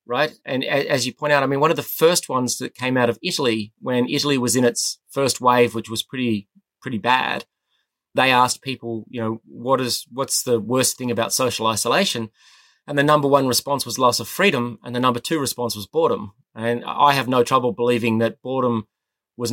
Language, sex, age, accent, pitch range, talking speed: English, male, 30-49, Australian, 120-140 Hz, 210 wpm